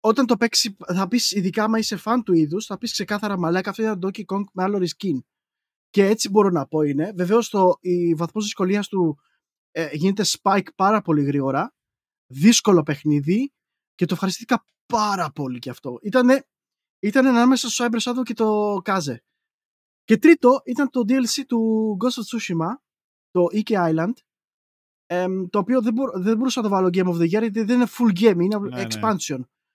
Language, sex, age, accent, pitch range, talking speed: Greek, male, 20-39, native, 175-235 Hz, 175 wpm